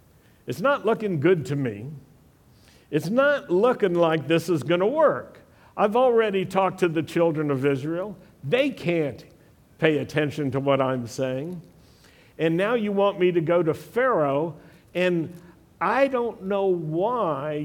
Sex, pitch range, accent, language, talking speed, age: male, 125-170 Hz, American, English, 155 wpm, 60-79